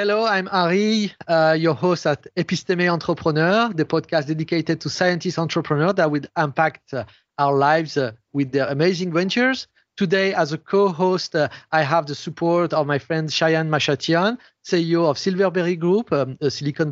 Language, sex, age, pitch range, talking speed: English, male, 30-49, 145-185 Hz, 165 wpm